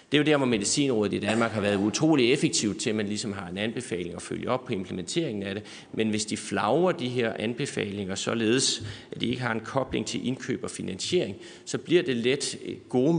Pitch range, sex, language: 105-125 Hz, male, Danish